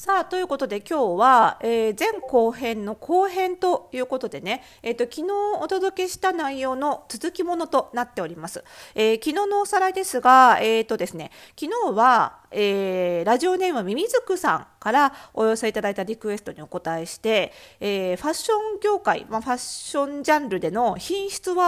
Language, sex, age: Japanese, female, 40-59